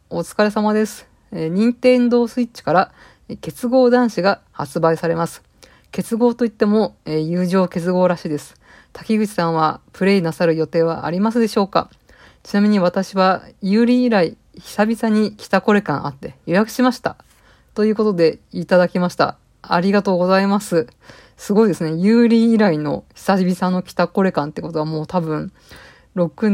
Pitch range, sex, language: 165-210 Hz, female, Japanese